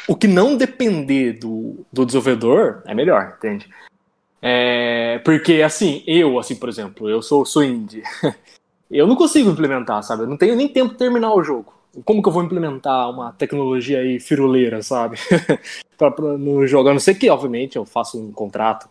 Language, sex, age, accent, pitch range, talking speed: Portuguese, male, 20-39, Brazilian, 120-165 Hz, 180 wpm